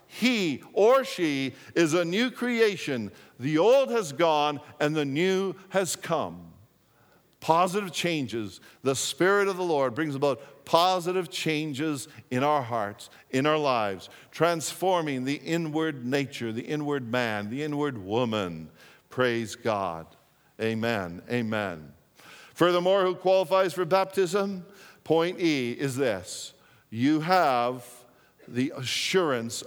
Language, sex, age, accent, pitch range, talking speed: English, male, 50-69, American, 125-170 Hz, 120 wpm